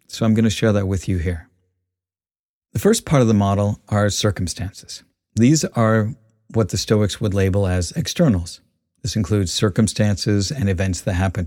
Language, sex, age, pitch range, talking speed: English, male, 50-69, 95-115 Hz, 175 wpm